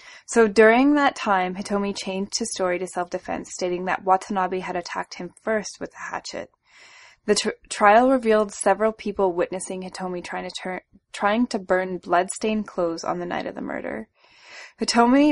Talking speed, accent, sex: 170 wpm, American, female